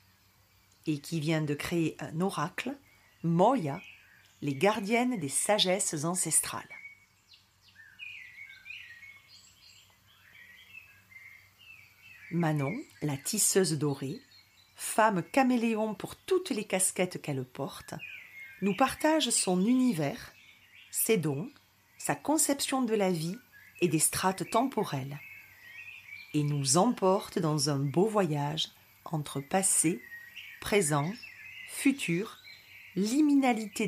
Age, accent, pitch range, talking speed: 40-59, French, 145-235 Hz, 95 wpm